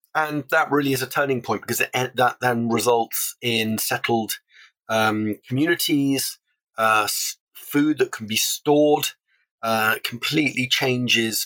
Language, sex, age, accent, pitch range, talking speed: English, male, 30-49, British, 110-125 Hz, 130 wpm